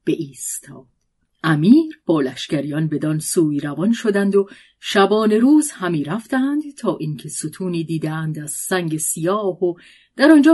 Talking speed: 130 wpm